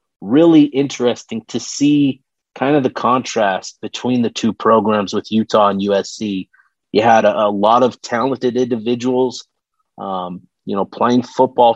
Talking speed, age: 150 wpm, 30-49